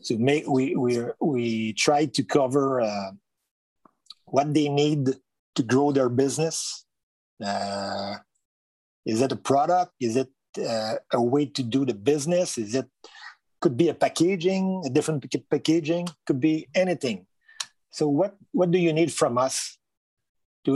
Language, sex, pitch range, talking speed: English, male, 125-160 Hz, 145 wpm